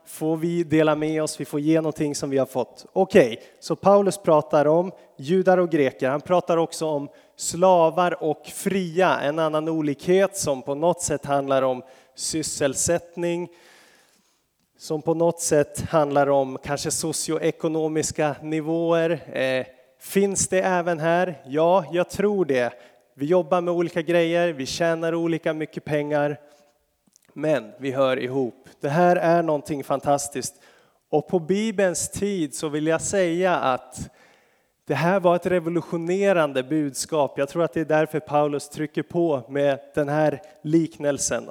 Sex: male